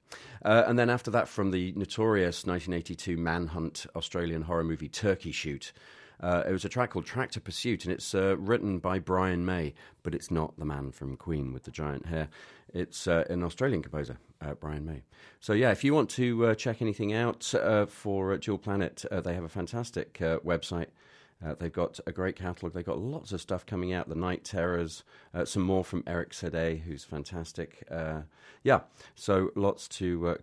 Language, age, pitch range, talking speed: English, 40-59, 80-100 Hz, 200 wpm